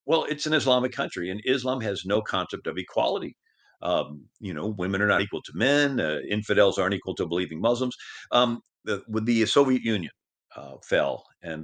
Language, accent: English, American